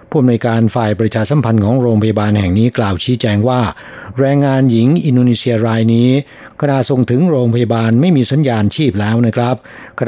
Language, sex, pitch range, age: Thai, male, 115-135 Hz, 60-79